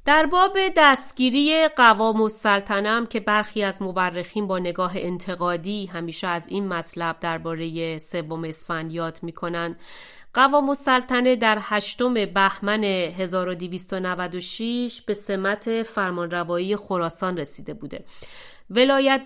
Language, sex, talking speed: Persian, female, 105 wpm